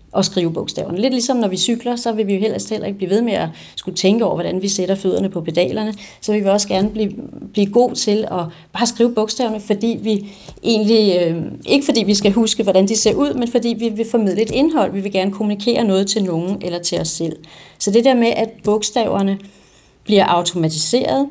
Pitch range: 175-220 Hz